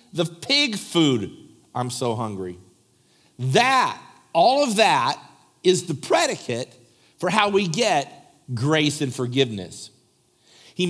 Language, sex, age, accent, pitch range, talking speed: English, male, 50-69, American, 155-235 Hz, 115 wpm